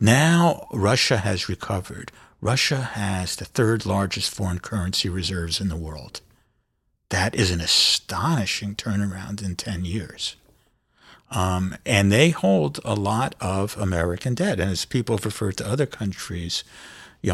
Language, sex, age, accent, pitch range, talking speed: English, male, 60-79, American, 95-120 Hz, 140 wpm